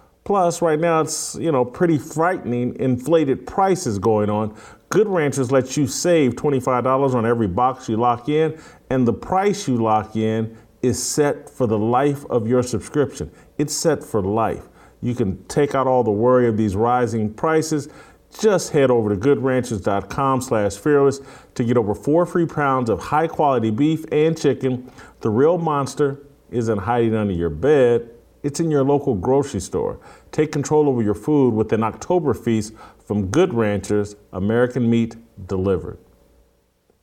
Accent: American